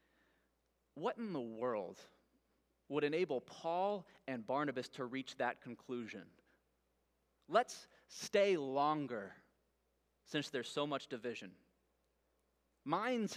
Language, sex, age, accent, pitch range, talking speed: English, male, 20-39, American, 125-170 Hz, 100 wpm